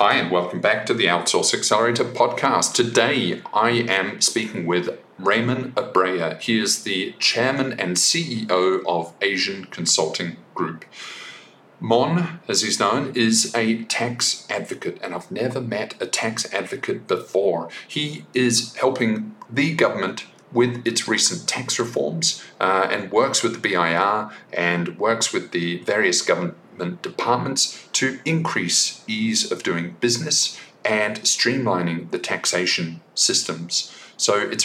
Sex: male